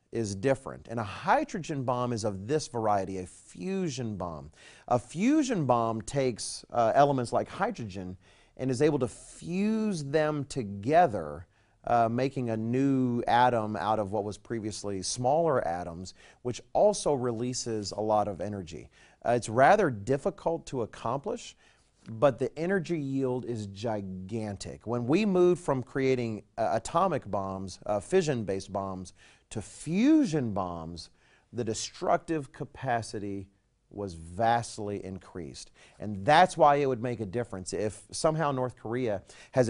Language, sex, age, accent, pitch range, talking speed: English, male, 40-59, American, 100-140 Hz, 140 wpm